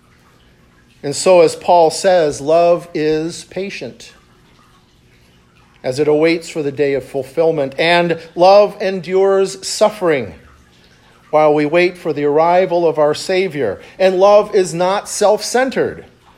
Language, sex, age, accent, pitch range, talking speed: English, male, 50-69, American, 160-235 Hz, 125 wpm